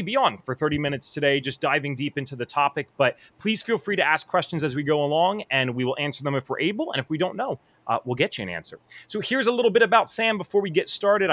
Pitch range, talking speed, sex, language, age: 130-205 Hz, 280 wpm, male, English, 30-49